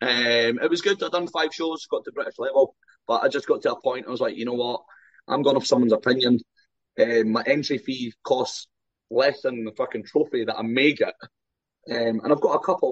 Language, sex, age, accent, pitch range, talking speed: English, male, 20-39, British, 115-175 Hz, 235 wpm